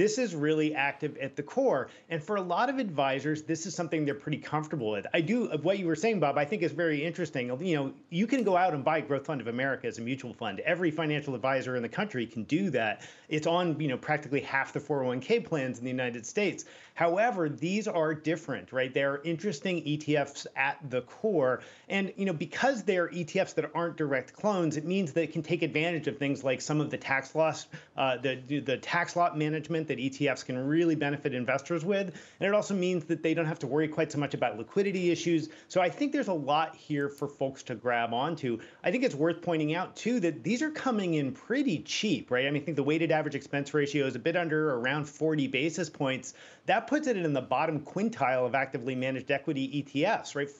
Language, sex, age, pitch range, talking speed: English, male, 40-59, 140-175 Hz, 230 wpm